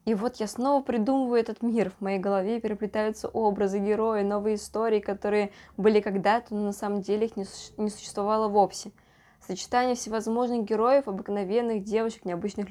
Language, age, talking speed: Russian, 20-39, 160 wpm